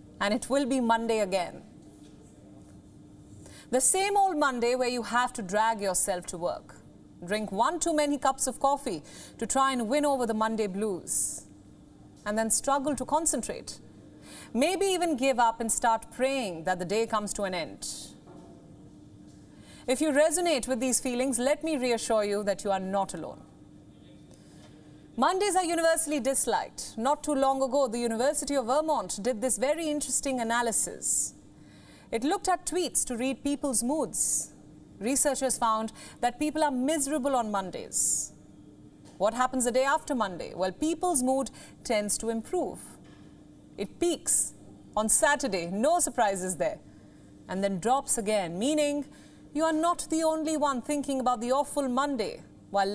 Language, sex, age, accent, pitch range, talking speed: English, female, 30-49, Indian, 220-295 Hz, 155 wpm